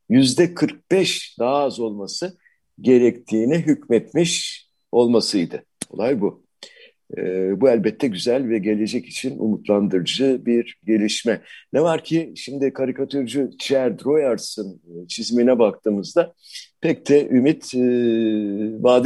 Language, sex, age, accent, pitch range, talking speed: Turkish, male, 60-79, native, 110-155 Hz, 105 wpm